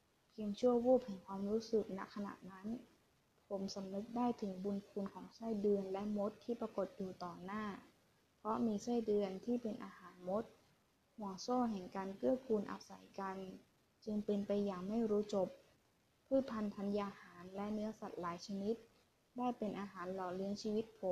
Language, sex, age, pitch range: Thai, female, 20-39, 195-230 Hz